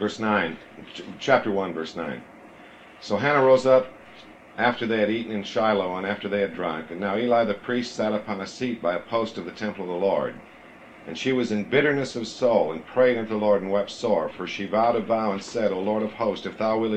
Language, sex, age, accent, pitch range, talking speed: English, male, 50-69, American, 100-120 Hz, 240 wpm